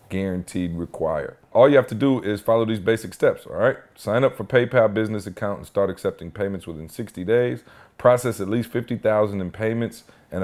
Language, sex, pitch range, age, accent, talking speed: English, male, 95-115 Hz, 40-59, American, 195 wpm